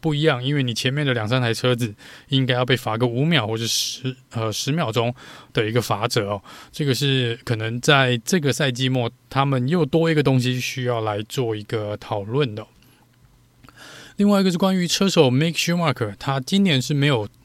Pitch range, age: 120-150 Hz, 20-39